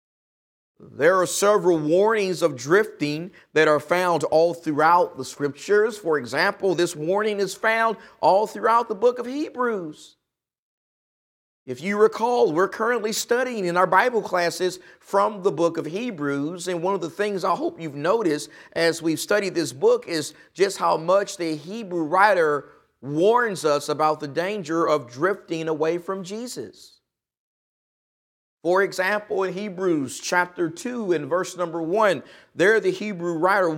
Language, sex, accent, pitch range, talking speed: English, male, American, 160-205 Hz, 150 wpm